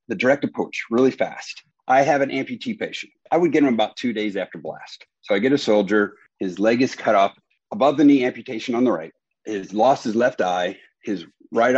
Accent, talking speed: American, 225 wpm